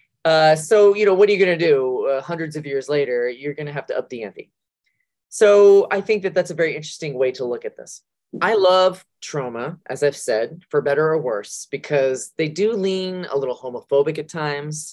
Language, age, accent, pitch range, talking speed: English, 20-39, American, 135-180 Hz, 215 wpm